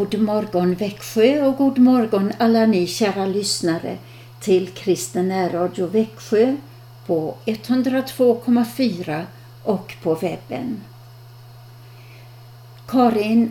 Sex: female